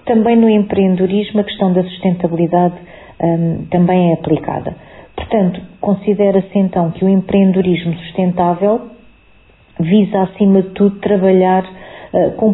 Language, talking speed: Portuguese, 110 wpm